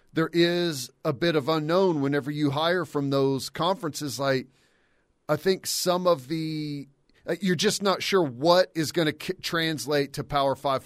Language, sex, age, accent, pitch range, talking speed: English, male, 40-59, American, 135-160 Hz, 170 wpm